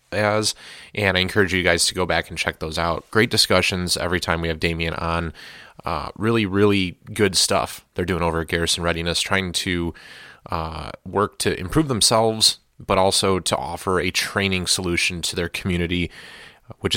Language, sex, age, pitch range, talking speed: English, male, 30-49, 85-95 Hz, 175 wpm